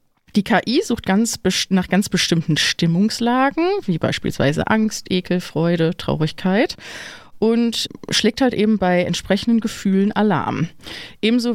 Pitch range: 160-220 Hz